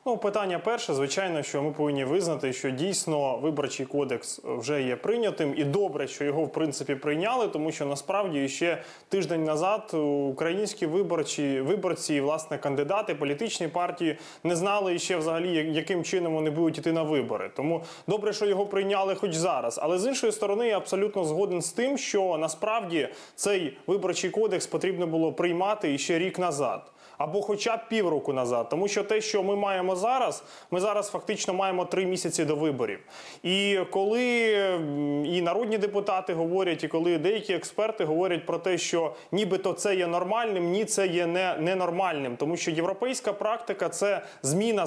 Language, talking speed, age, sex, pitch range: Ukrainian, 165 wpm, 20-39, male, 165-210 Hz